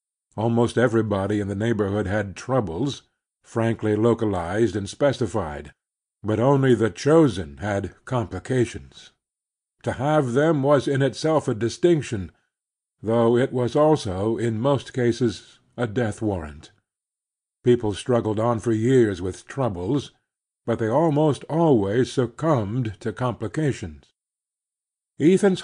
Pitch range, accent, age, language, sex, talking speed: 110-135 Hz, American, 50-69, English, male, 115 wpm